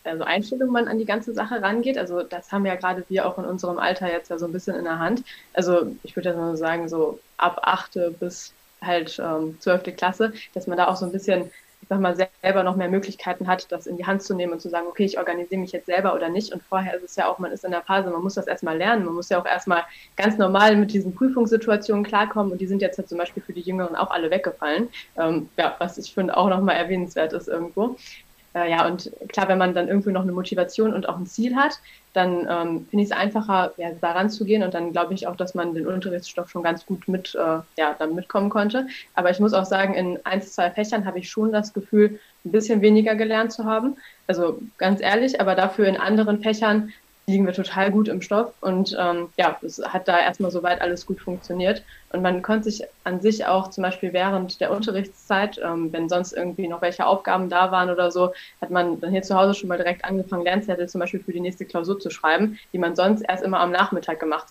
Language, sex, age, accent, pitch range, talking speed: German, female, 20-39, German, 175-200 Hz, 245 wpm